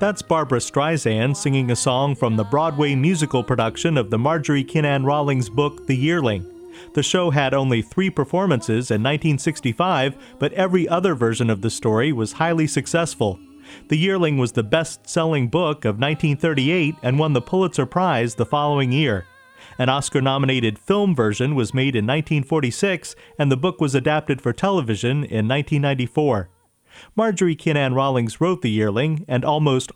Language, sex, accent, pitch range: English, male, American, 125-160 Hz